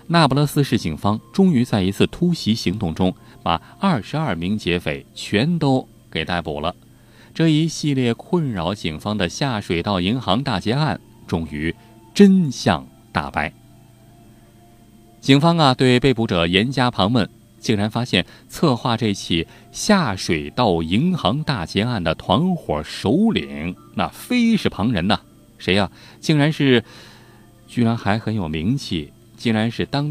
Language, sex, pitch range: Chinese, male, 95-140 Hz